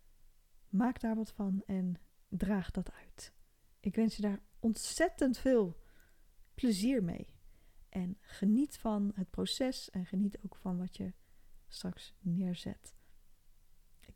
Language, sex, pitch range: Dutch, female, 175-210 Hz